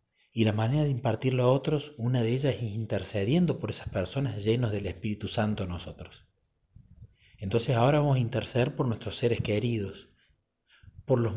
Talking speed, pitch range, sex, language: 170 wpm, 105-125 Hz, male, Spanish